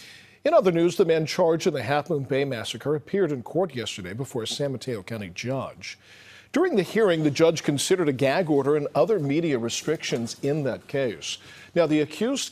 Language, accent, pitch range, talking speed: English, American, 110-150 Hz, 195 wpm